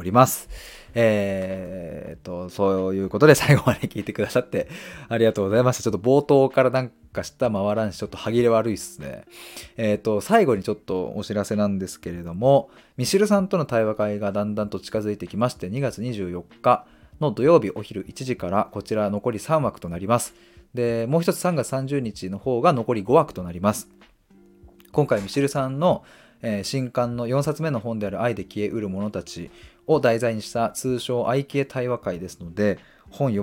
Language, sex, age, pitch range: Japanese, male, 20-39, 95-130 Hz